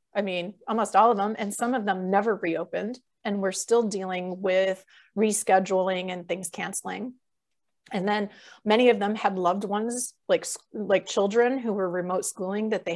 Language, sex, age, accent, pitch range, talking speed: English, female, 30-49, American, 200-245 Hz, 175 wpm